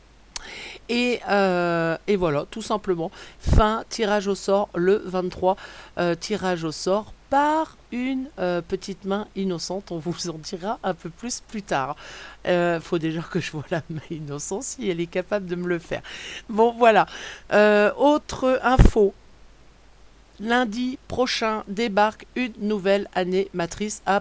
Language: French